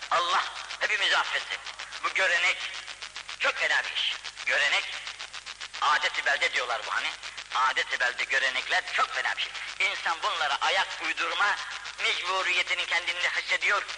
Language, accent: Turkish, native